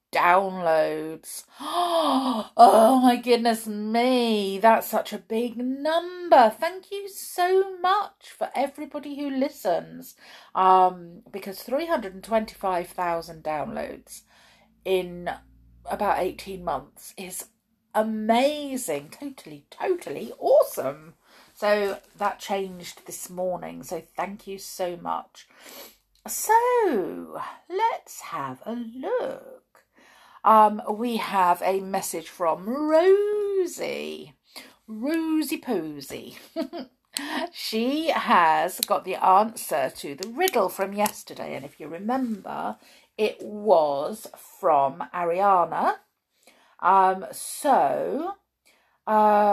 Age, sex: 40-59, female